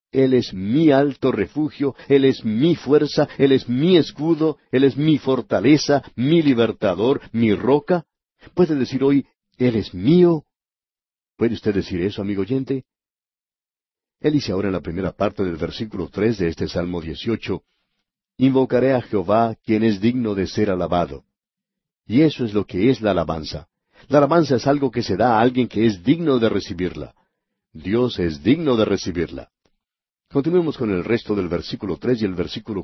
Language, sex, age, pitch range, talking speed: Spanish, male, 50-69, 100-135 Hz, 170 wpm